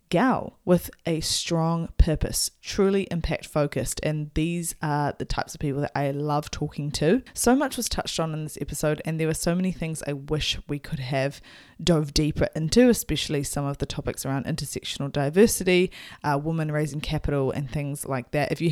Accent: Australian